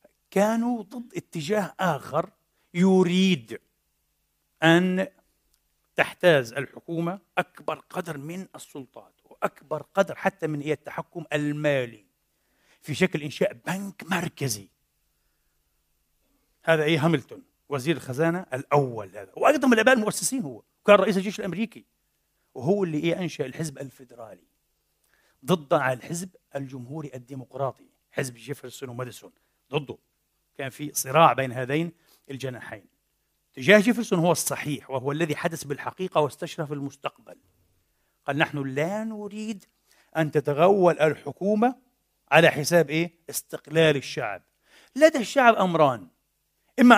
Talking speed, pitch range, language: 110 wpm, 140-190 Hz, Arabic